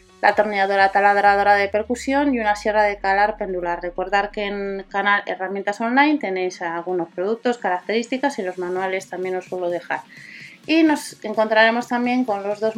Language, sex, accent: Spanish, female, Spanish